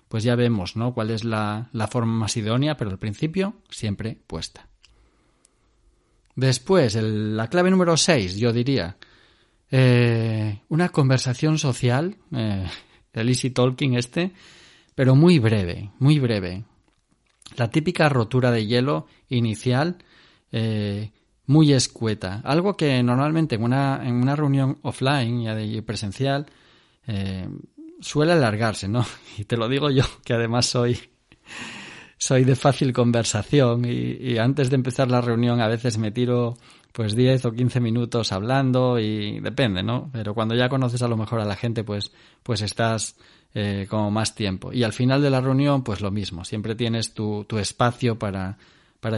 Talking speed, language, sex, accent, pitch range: 155 wpm, Spanish, male, Spanish, 110-135 Hz